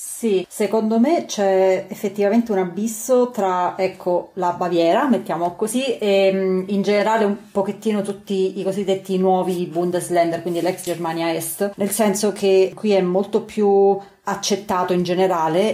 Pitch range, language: 170-195 Hz, Italian